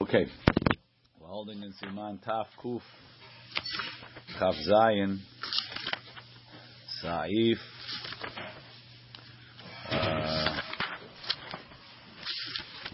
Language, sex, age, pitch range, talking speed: English, male, 50-69, 90-115 Hz, 50 wpm